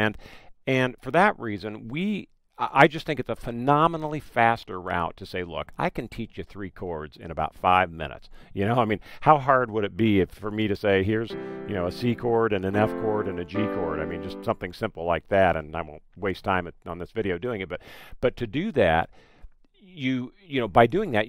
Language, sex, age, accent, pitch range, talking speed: English, male, 50-69, American, 95-135 Hz, 235 wpm